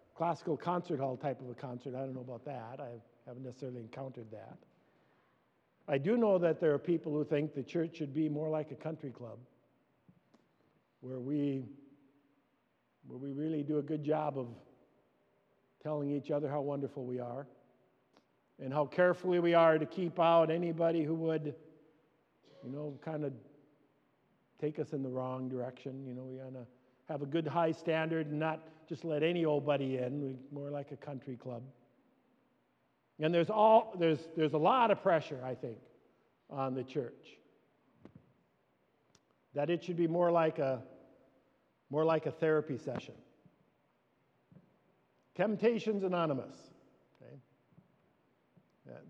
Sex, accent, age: male, American, 50-69